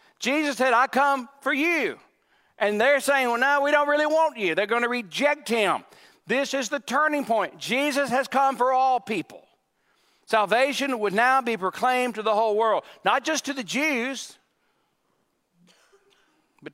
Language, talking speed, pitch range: English, 170 wpm, 195-265 Hz